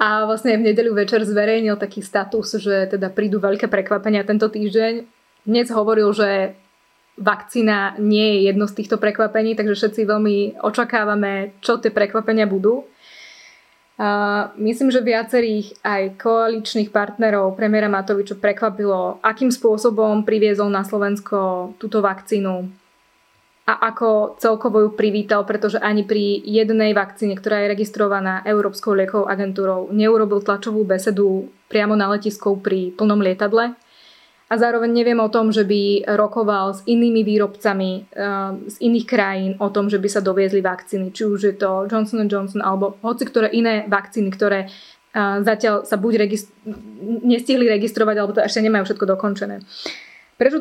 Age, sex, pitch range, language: 20-39, female, 200-225 Hz, Czech